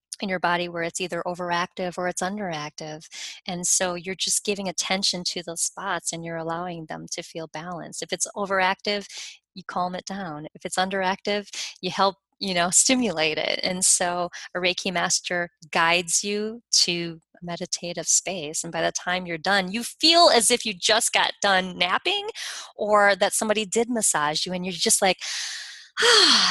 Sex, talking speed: female, 180 wpm